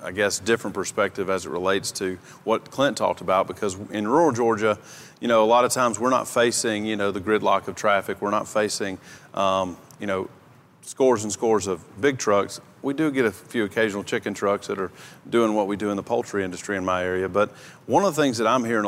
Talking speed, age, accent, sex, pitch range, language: 230 wpm, 40-59, American, male, 100-125 Hz, English